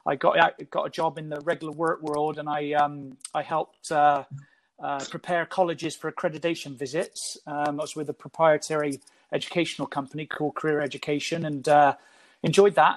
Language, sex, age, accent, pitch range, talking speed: English, male, 30-49, British, 155-180 Hz, 175 wpm